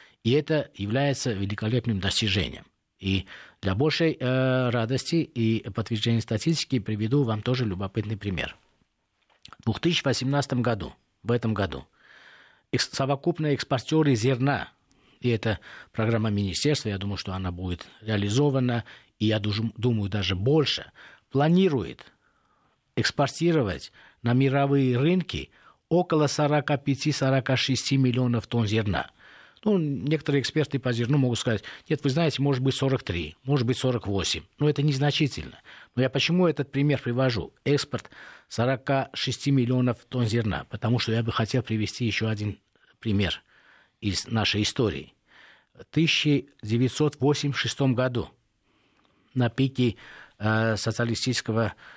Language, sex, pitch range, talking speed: Russian, male, 105-135 Hz, 115 wpm